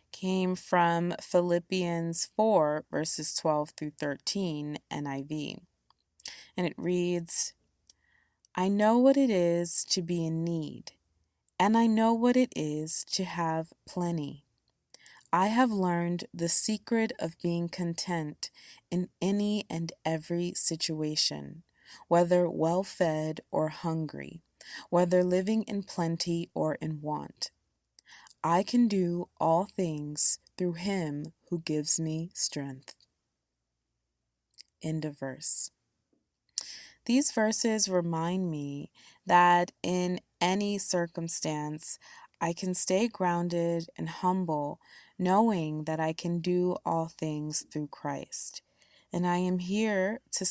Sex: female